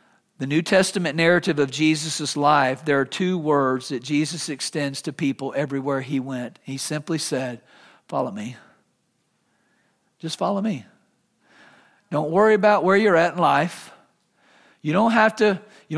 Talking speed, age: 135 wpm, 50-69